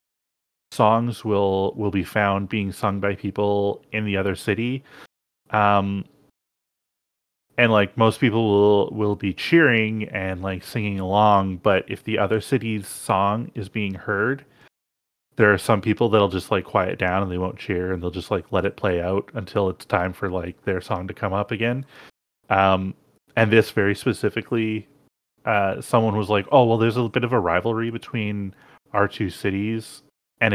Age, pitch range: 30-49, 95-115 Hz